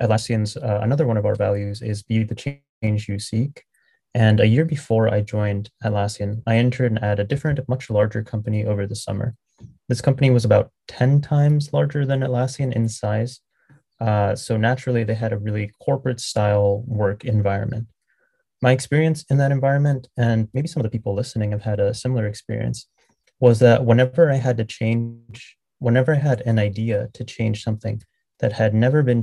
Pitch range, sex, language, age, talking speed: 105-125 Hz, male, English, 20-39, 185 wpm